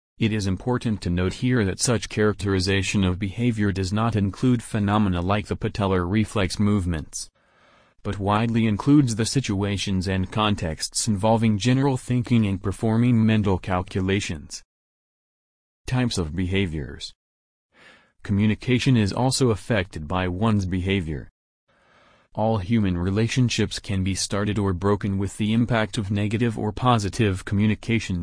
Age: 40-59